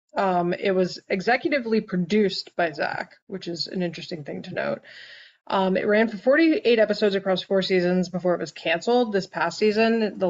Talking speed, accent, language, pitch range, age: 180 wpm, American, English, 175-205 Hz, 20-39